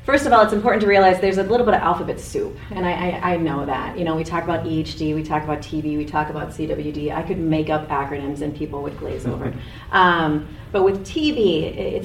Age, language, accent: 30-49, English, American